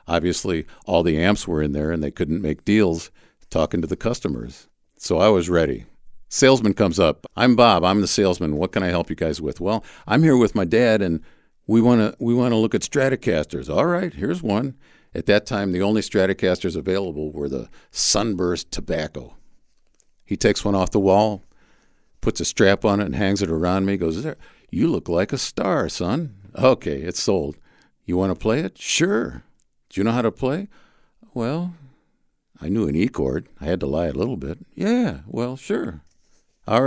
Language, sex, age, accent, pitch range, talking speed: English, male, 50-69, American, 90-110 Hz, 200 wpm